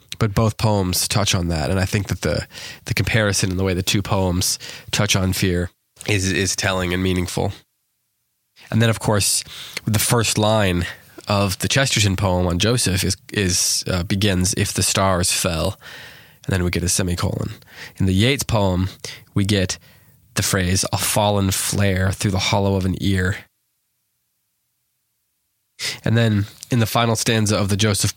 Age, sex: 20-39, male